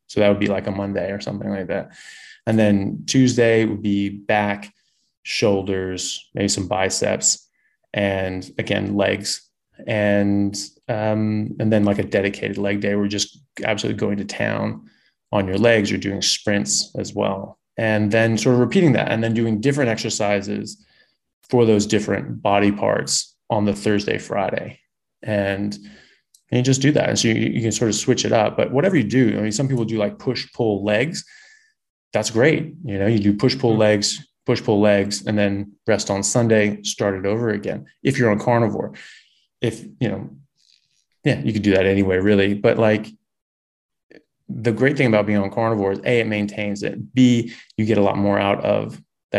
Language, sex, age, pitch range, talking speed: Persian, male, 20-39, 100-115 Hz, 185 wpm